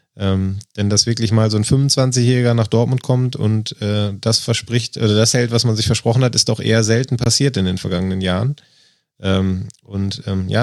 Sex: male